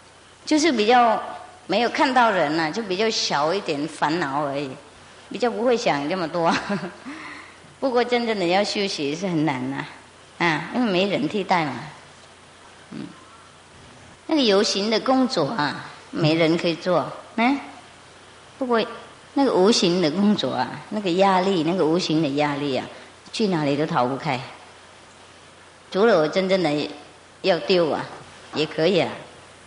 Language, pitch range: English, 150-200 Hz